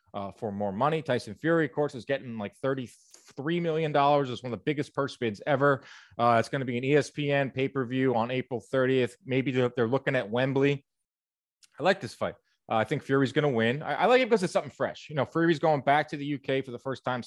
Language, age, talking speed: English, 30-49, 235 wpm